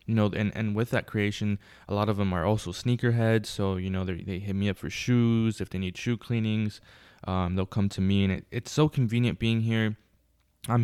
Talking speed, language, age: 235 wpm, English, 20-39